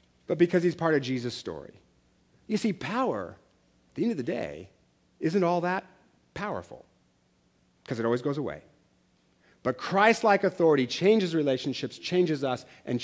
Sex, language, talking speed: male, English, 155 wpm